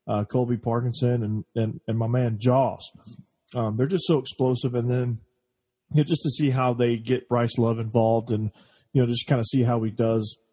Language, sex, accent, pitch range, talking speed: English, male, American, 110-130 Hz, 210 wpm